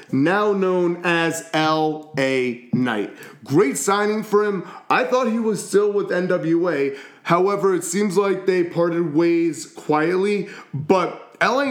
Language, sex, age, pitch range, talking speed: English, male, 30-49, 160-215 Hz, 135 wpm